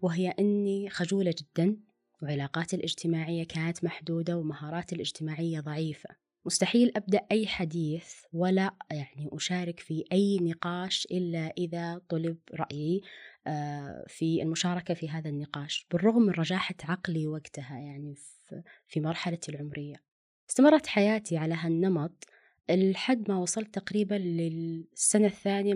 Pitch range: 160-195 Hz